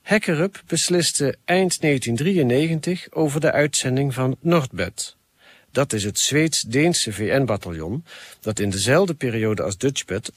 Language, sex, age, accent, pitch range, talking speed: Dutch, male, 50-69, Dutch, 115-170 Hz, 120 wpm